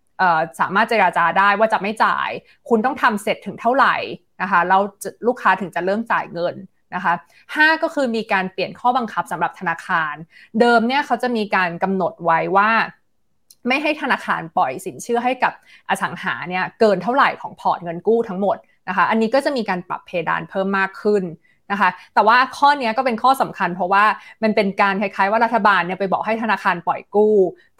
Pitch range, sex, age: 180-230 Hz, female, 20-39